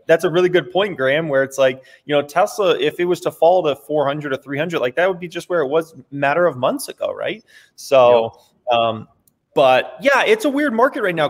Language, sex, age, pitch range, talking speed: English, male, 20-39, 135-180 Hz, 240 wpm